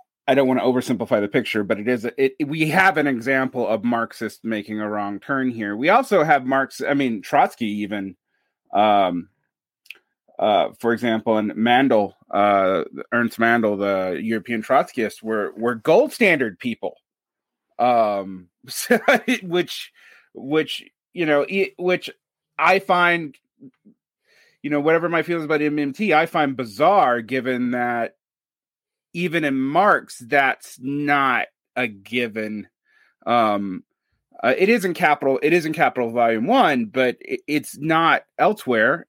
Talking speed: 145 wpm